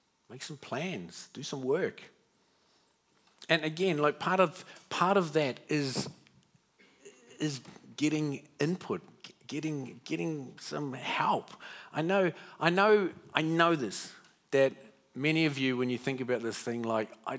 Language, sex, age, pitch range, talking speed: English, male, 50-69, 125-155 Hz, 140 wpm